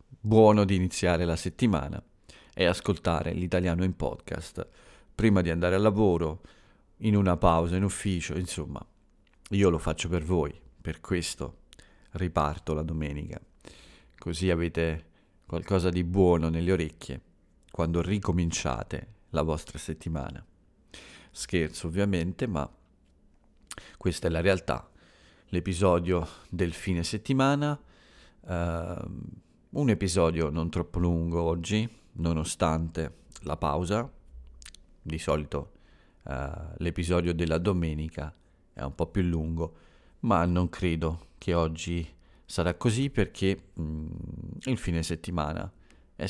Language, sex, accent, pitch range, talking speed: Italian, male, native, 80-95 Hz, 115 wpm